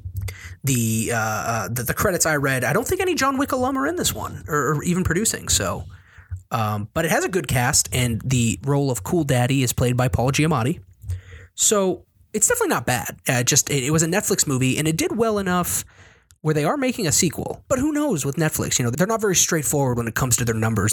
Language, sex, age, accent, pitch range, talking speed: English, male, 20-39, American, 105-160 Hz, 230 wpm